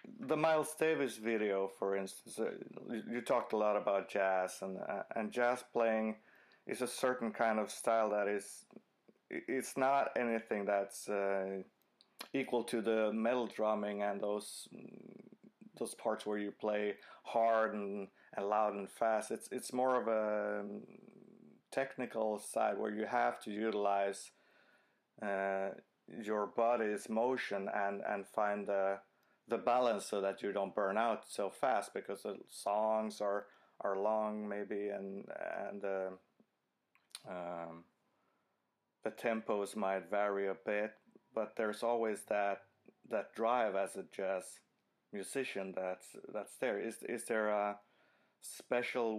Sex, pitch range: male, 100-115 Hz